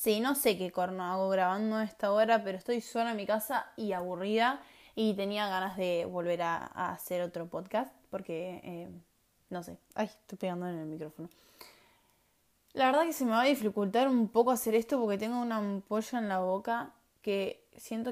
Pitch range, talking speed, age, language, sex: 190-245 Hz, 200 wpm, 10-29, Spanish, female